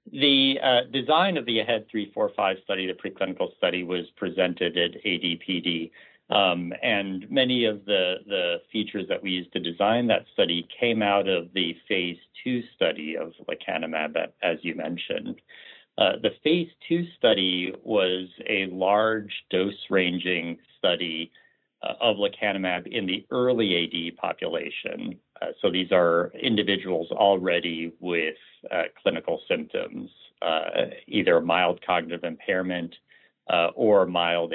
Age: 50-69